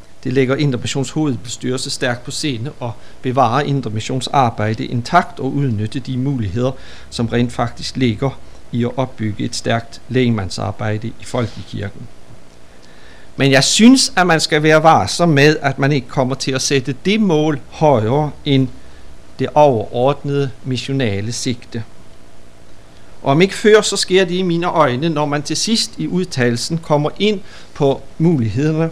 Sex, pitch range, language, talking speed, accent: male, 120-155 Hz, Danish, 145 wpm, native